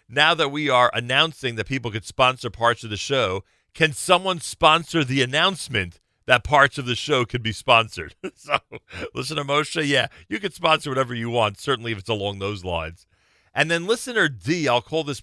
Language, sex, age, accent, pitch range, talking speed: English, male, 40-59, American, 90-125 Hz, 195 wpm